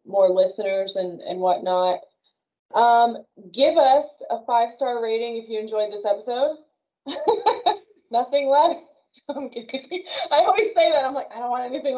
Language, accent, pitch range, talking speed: English, American, 205-260 Hz, 150 wpm